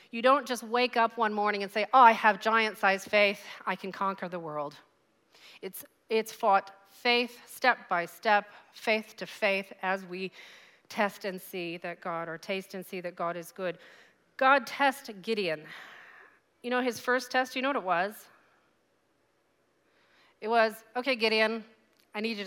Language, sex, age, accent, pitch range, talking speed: English, female, 40-59, American, 195-235 Hz, 170 wpm